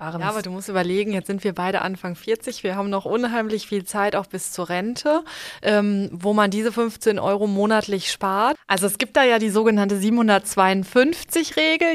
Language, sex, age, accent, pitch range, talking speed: German, female, 20-39, German, 205-265 Hz, 185 wpm